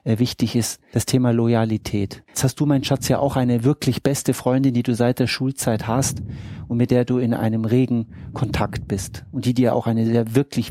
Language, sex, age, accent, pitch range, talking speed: German, male, 40-59, German, 115-140 Hz, 215 wpm